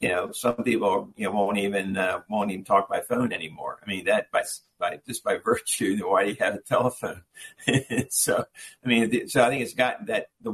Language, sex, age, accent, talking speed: English, male, 50-69, American, 220 wpm